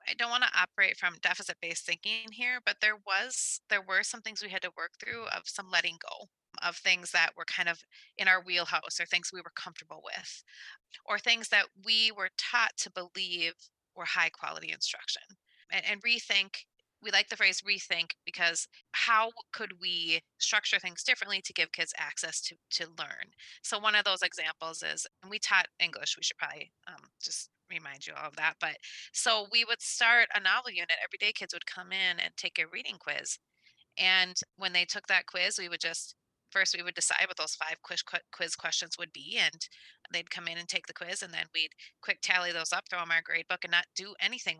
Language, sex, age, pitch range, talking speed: English, female, 30-49, 170-215 Hz, 210 wpm